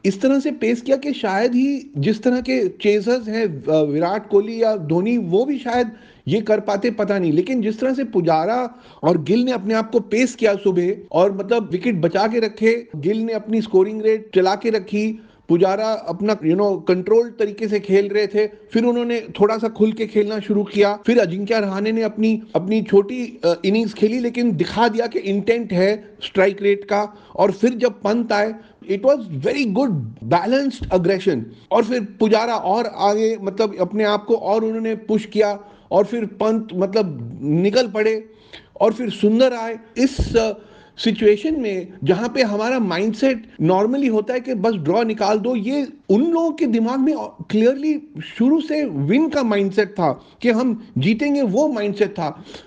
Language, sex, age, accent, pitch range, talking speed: Hindi, male, 40-59, native, 200-235 Hz, 115 wpm